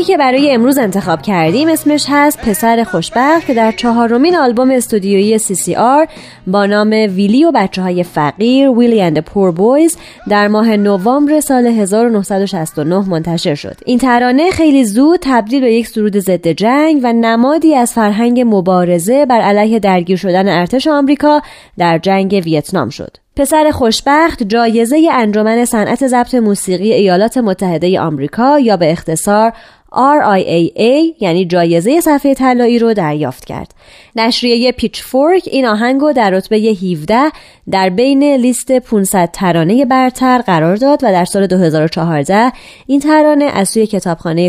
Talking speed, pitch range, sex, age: 140 wpm, 185-265 Hz, female, 20-39